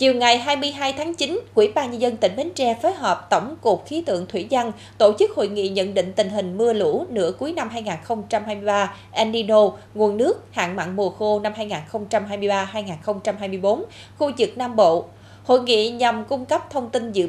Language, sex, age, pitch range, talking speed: Vietnamese, female, 20-39, 195-250 Hz, 190 wpm